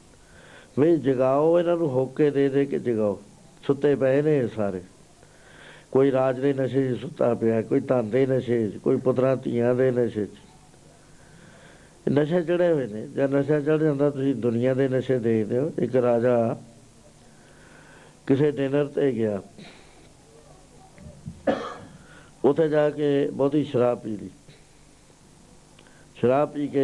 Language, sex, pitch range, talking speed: Punjabi, male, 120-145 Hz, 115 wpm